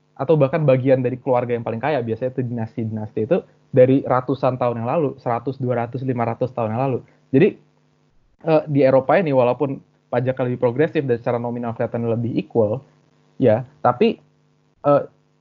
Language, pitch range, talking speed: Indonesian, 120-140 Hz, 160 wpm